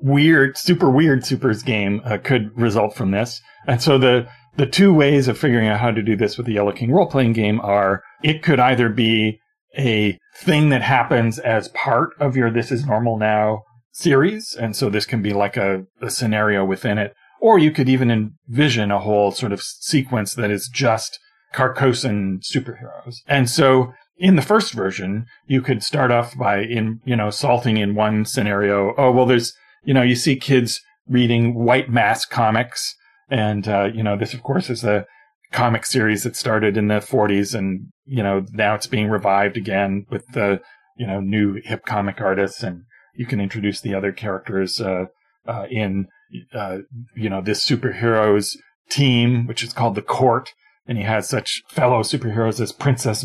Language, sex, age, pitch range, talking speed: English, male, 40-59, 105-130 Hz, 185 wpm